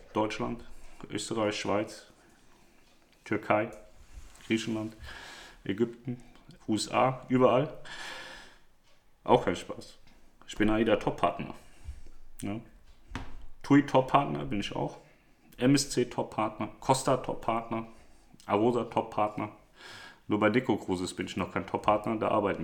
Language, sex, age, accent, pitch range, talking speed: German, male, 40-59, German, 90-115 Hz, 105 wpm